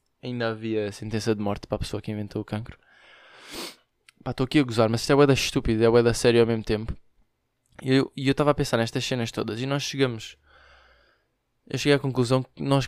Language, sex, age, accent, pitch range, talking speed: Portuguese, male, 20-39, Brazilian, 110-135 Hz, 205 wpm